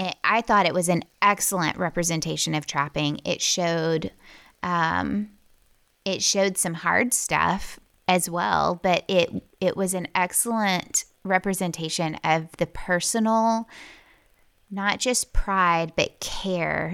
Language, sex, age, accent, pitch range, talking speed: English, female, 20-39, American, 165-200 Hz, 125 wpm